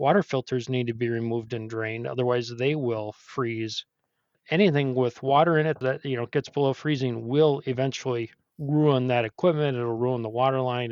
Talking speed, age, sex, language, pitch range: 180 wpm, 40-59, male, English, 125-150 Hz